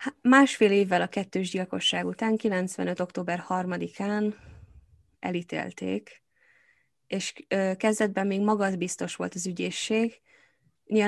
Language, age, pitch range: Hungarian, 20-39, 175-210 Hz